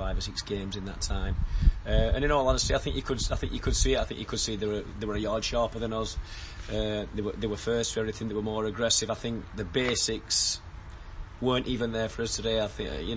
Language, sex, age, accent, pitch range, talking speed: English, male, 30-49, British, 90-115 Hz, 280 wpm